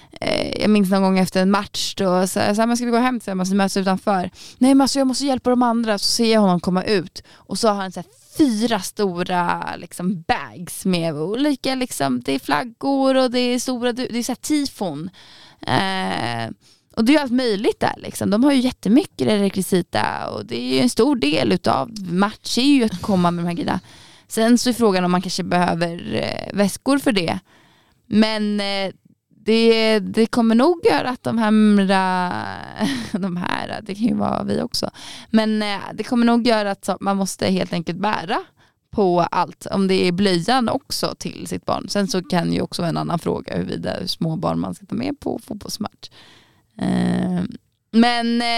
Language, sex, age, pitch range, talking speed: Swedish, female, 20-39, 185-240 Hz, 190 wpm